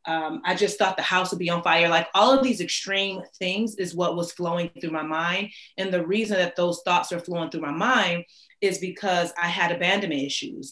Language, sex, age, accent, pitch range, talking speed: English, female, 30-49, American, 165-195 Hz, 225 wpm